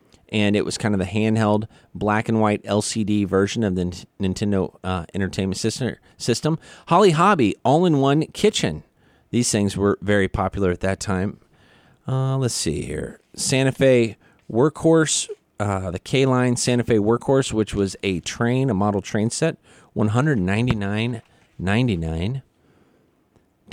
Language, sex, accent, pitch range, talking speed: English, male, American, 100-130 Hz, 130 wpm